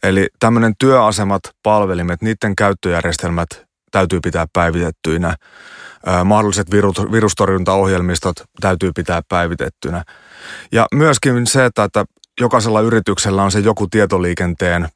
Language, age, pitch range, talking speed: Finnish, 30-49, 85-105 Hz, 110 wpm